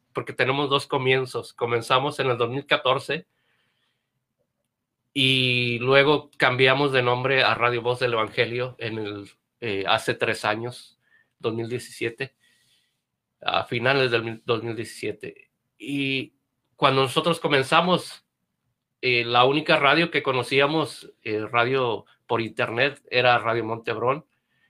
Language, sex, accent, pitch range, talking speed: Spanish, male, Mexican, 115-140 Hz, 105 wpm